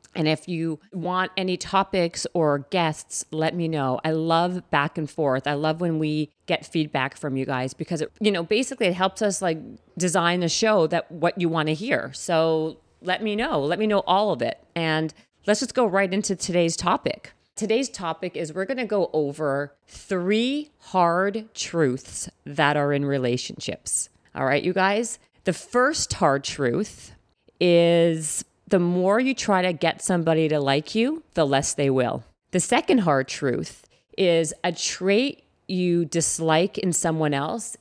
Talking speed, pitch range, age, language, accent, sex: 175 wpm, 150-190 Hz, 40-59, English, American, female